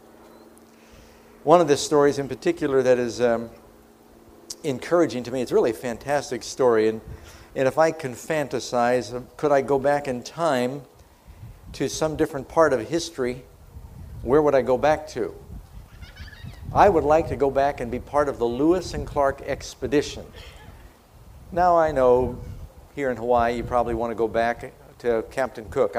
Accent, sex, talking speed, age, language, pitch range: American, male, 165 wpm, 50-69, English, 115-160 Hz